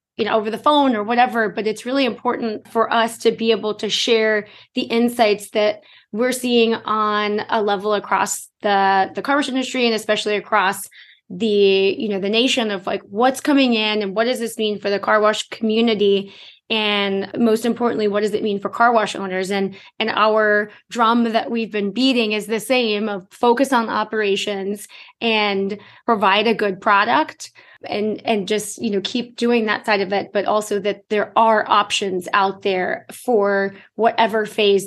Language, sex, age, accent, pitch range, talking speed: English, female, 20-39, American, 195-230 Hz, 185 wpm